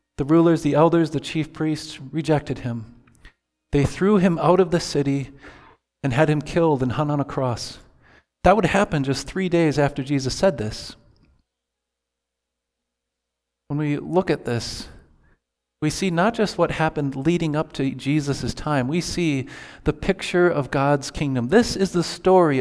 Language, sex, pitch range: English, male, 125-170 Hz